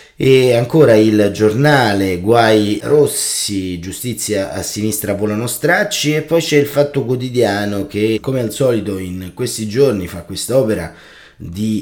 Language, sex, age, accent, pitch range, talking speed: Italian, male, 30-49, native, 95-130 Hz, 140 wpm